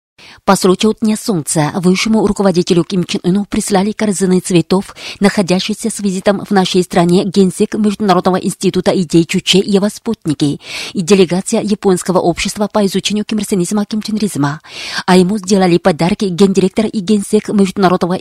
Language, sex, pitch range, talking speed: Russian, female, 185-210 Hz, 140 wpm